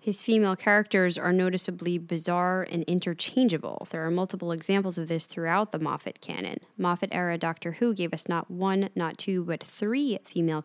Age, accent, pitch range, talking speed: 10-29, American, 170-205 Hz, 170 wpm